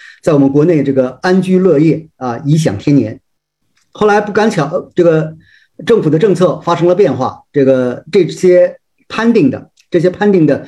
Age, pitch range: 50-69, 135-180 Hz